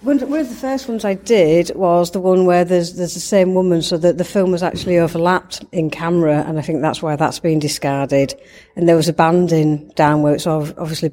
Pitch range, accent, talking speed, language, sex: 155-175 Hz, British, 225 wpm, English, female